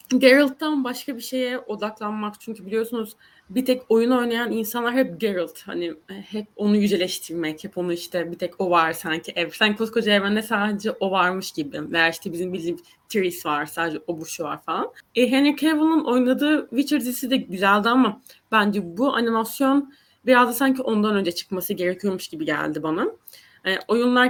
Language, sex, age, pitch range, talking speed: Turkish, female, 20-39, 190-255 Hz, 170 wpm